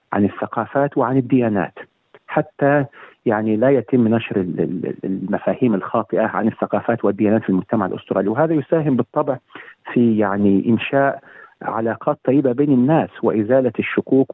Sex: male